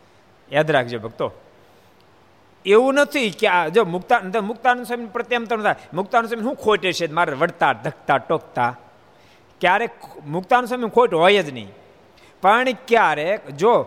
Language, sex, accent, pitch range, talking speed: Gujarati, male, native, 170-240 Hz, 125 wpm